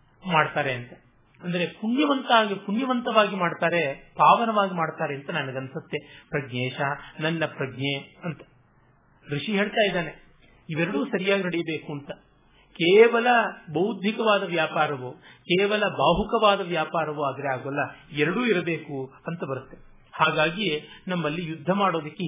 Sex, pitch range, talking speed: male, 150-200 Hz, 95 wpm